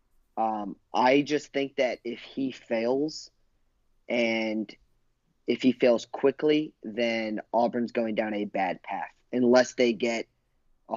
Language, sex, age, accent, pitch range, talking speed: English, male, 30-49, American, 110-130 Hz, 130 wpm